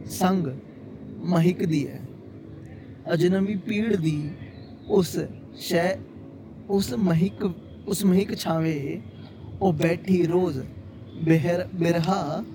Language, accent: Hindi, native